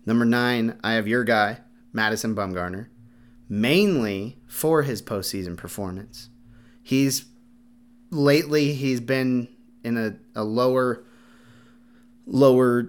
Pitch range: 110-130 Hz